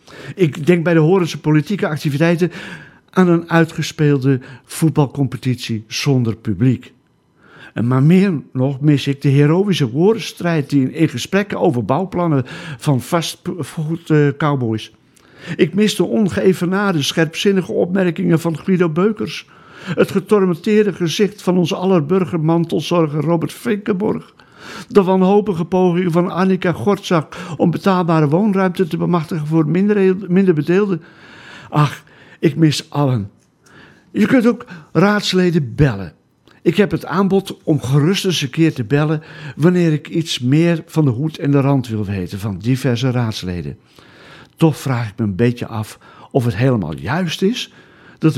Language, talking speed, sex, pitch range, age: Dutch, 135 wpm, male, 135-185 Hz, 60-79